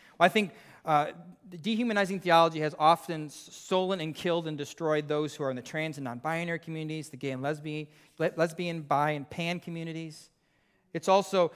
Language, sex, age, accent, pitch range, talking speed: English, male, 30-49, American, 140-170 Hz, 170 wpm